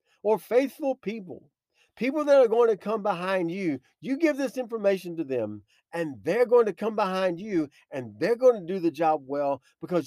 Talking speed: 195 wpm